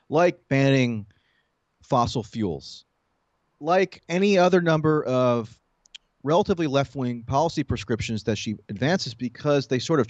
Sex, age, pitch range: male, 30-49, 120-160 Hz